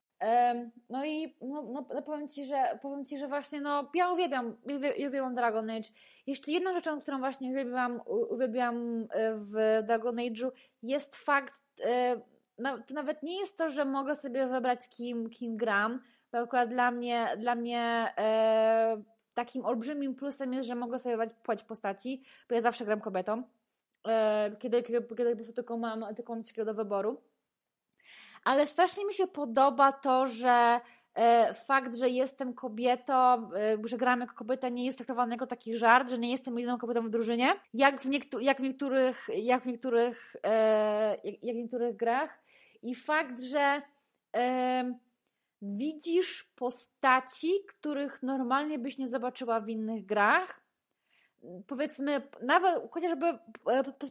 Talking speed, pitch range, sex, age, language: 140 wpm, 235-280 Hz, female, 20-39, Polish